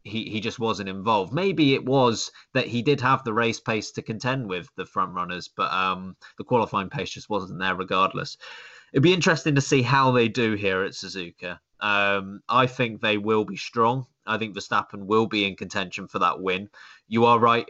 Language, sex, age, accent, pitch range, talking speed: English, male, 20-39, British, 100-130 Hz, 205 wpm